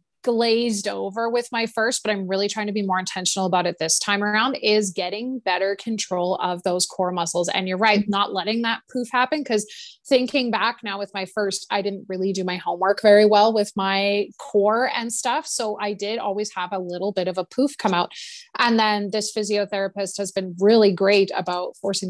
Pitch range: 190-220 Hz